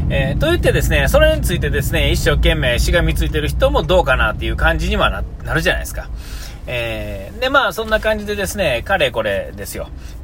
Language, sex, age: Japanese, male, 40-59